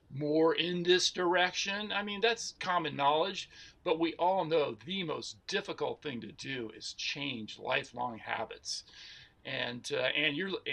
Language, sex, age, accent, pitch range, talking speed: English, male, 50-69, American, 145-185 Hz, 150 wpm